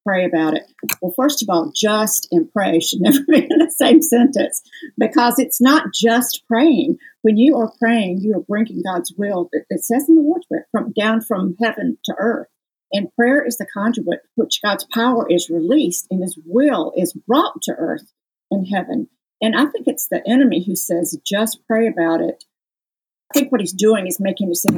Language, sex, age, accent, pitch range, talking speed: English, female, 50-69, American, 175-255 Hz, 200 wpm